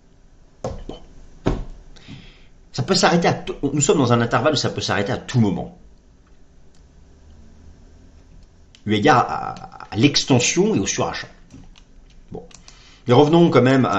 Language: French